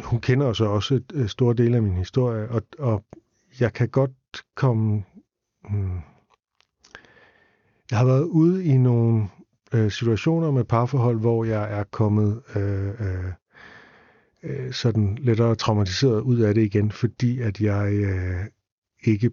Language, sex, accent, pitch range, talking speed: Danish, male, native, 100-120 Hz, 135 wpm